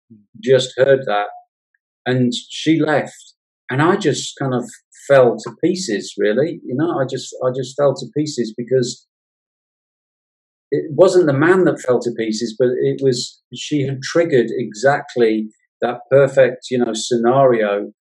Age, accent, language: 40-59, British, English